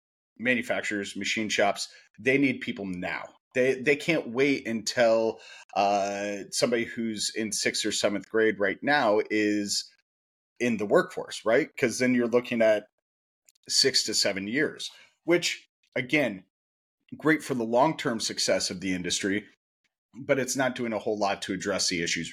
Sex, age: male, 30-49